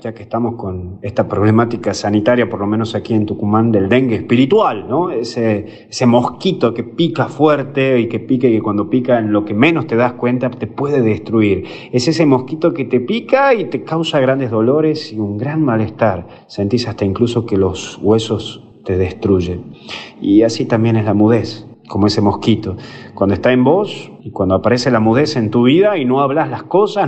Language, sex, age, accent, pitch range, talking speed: Spanish, male, 40-59, Argentinian, 110-140 Hz, 195 wpm